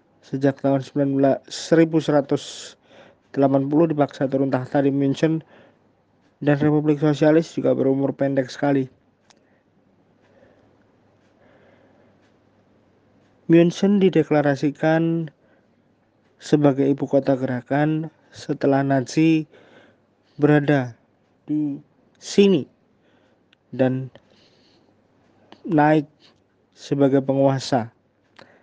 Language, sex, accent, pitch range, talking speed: Indonesian, male, native, 135-150 Hz, 65 wpm